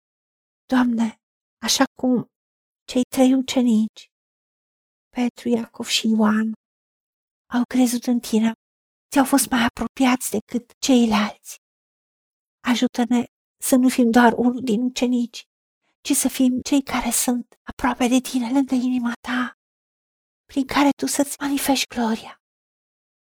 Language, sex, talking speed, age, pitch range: Romanian, female, 120 wpm, 50-69, 235-265 Hz